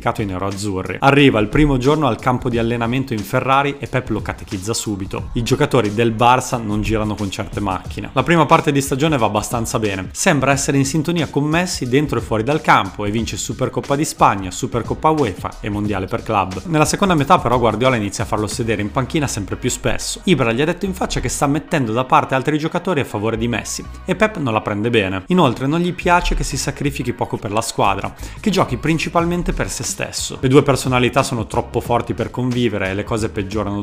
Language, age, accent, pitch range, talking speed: Italian, 30-49, native, 105-140 Hz, 215 wpm